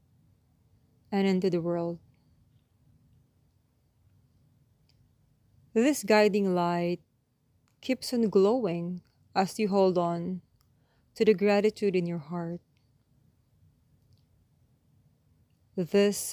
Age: 20-39